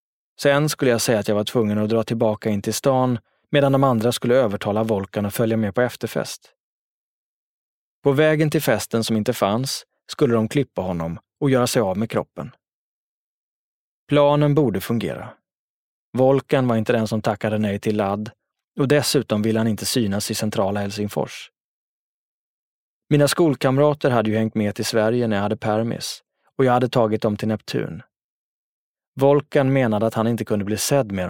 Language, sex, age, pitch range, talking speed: English, male, 20-39, 110-135 Hz, 175 wpm